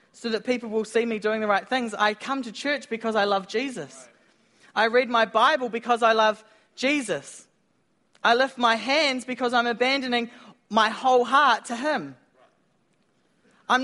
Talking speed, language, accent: 170 wpm, English, Australian